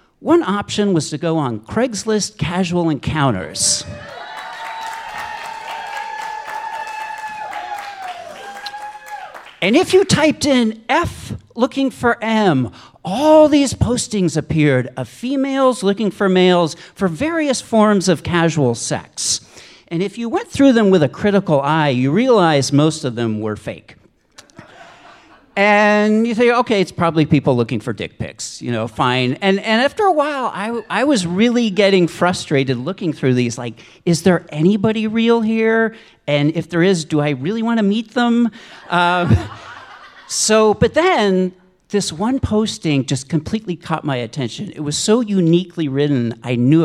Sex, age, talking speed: male, 50-69, 145 wpm